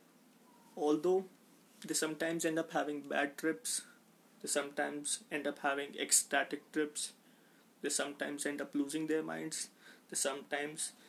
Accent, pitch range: native, 145-240 Hz